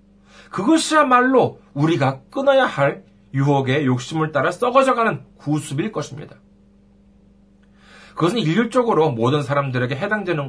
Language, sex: Korean, male